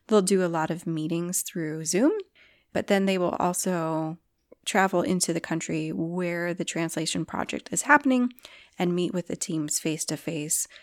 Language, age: English, 30-49